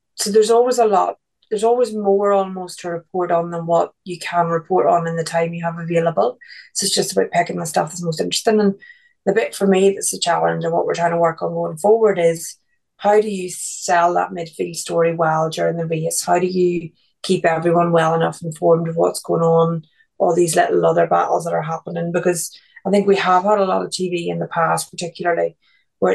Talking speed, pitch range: 225 wpm, 165-195 Hz